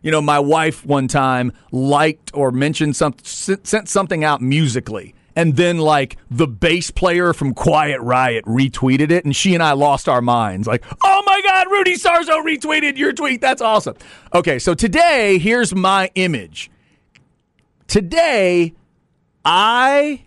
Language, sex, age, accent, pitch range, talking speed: English, male, 40-59, American, 145-205 Hz, 150 wpm